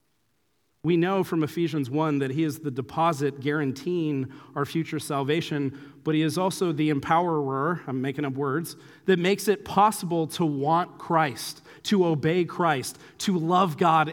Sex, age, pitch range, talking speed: male, 40-59, 155-225 Hz, 155 wpm